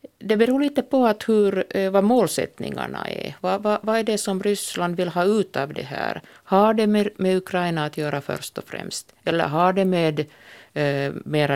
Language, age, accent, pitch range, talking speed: Swedish, 50-69, Finnish, 135-180 Hz, 180 wpm